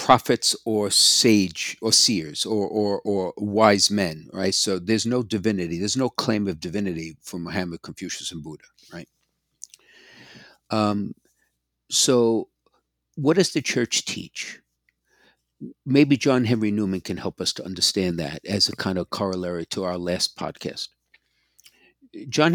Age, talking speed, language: 60-79, 140 wpm, English